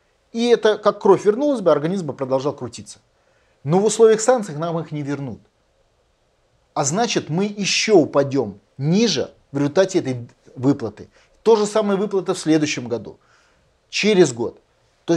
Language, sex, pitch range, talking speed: Russian, male, 130-190 Hz, 150 wpm